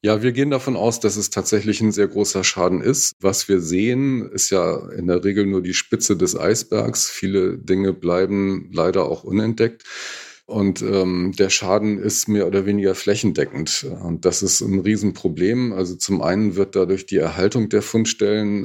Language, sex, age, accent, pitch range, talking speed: German, male, 40-59, German, 90-105 Hz, 175 wpm